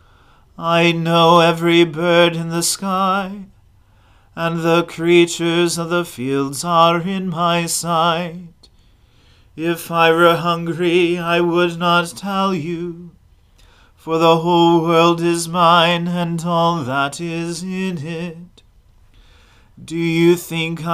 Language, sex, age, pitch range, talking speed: English, male, 40-59, 165-170 Hz, 120 wpm